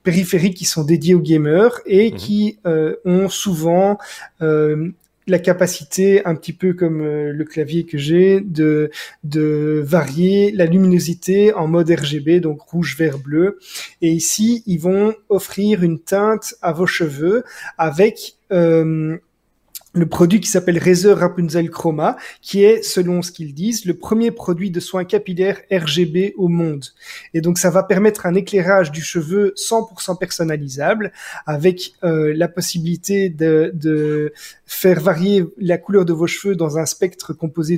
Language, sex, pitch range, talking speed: French, male, 165-195 Hz, 150 wpm